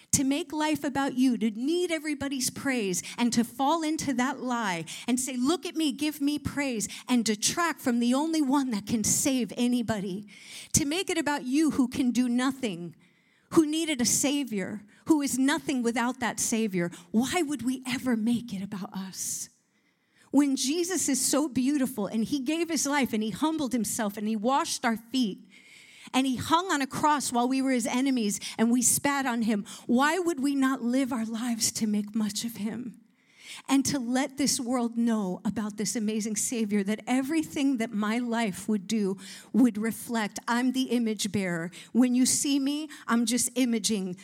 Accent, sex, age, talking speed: American, female, 40-59, 185 wpm